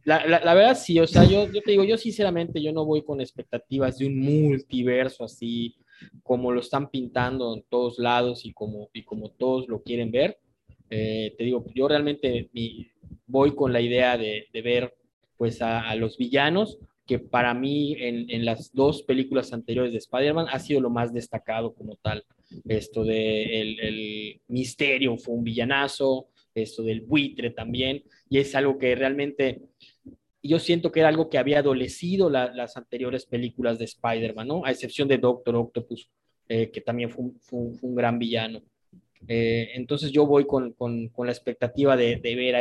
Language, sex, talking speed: Spanish, male, 190 wpm